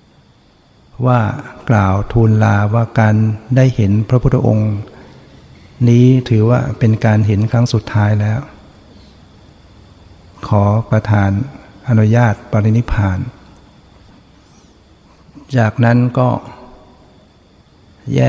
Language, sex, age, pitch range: Thai, male, 60-79, 100-120 Hz